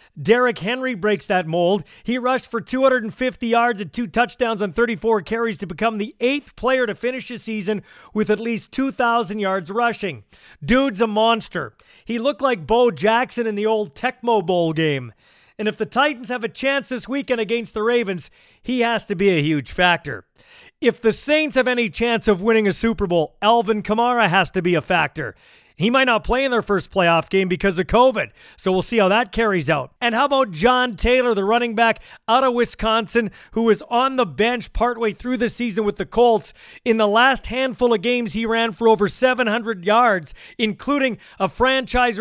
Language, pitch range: English, 200-245 Hz